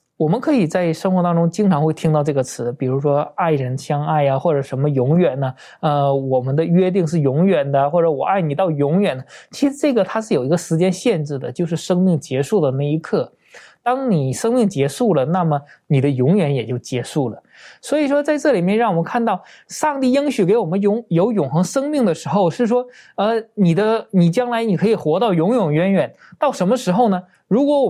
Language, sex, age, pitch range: Chinese, male, 20-39, 150-225 Hz